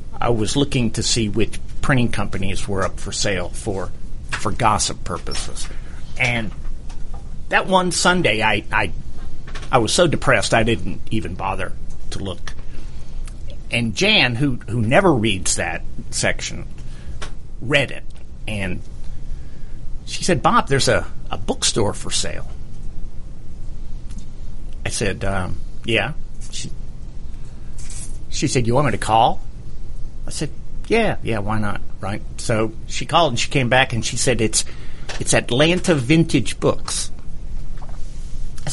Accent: American